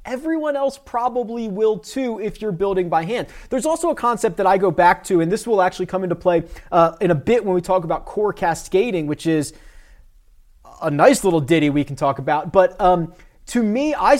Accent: American